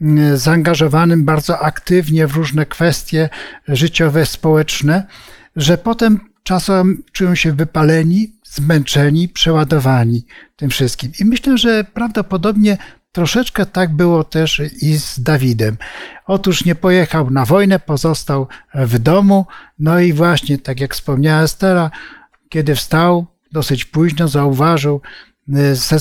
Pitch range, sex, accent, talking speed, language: 140-170 Hz, male, native, 115 wpm, Polish